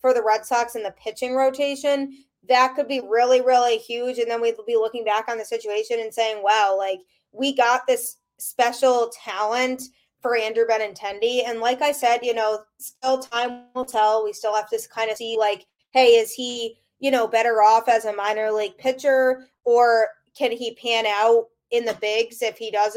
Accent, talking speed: American, 195 wpm